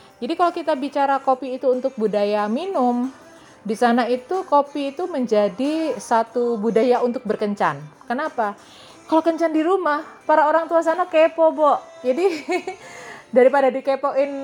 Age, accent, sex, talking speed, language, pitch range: 30-49, native, female, 135 wpm, Indonesian, 205-280 Hz